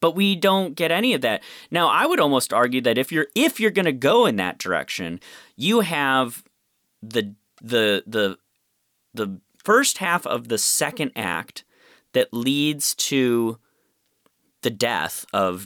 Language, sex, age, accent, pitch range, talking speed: English, male, 30-49, American, 95-130 Hz, 155 wpm